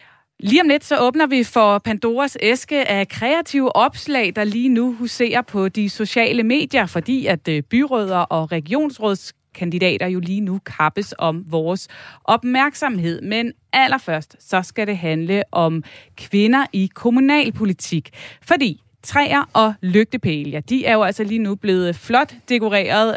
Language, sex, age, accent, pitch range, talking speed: Danish, female, 20-39, native, 175-245 Hz, 145 wpm